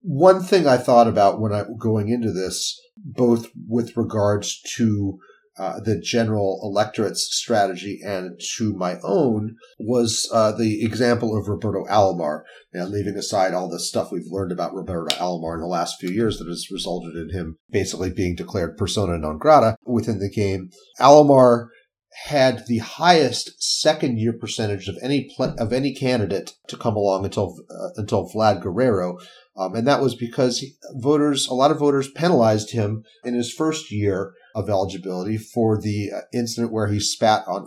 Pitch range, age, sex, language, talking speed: 100-125 Hz, 40-59, male, English, 175 wpm